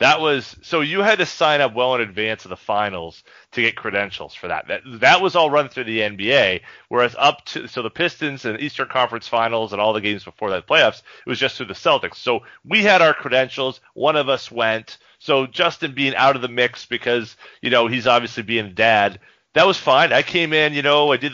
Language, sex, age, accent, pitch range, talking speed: English, male, 30-49, American, 115-155 Hz, 235 wpm